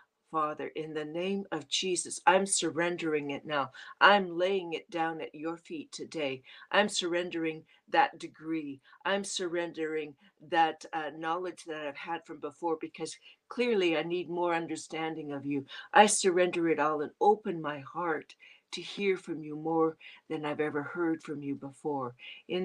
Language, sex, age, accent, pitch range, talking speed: English, female, 60-79, American, 155-190 Hz, 160 wpm